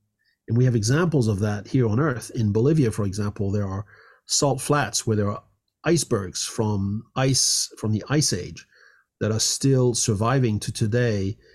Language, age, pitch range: English, 40-59, 105-135 Hz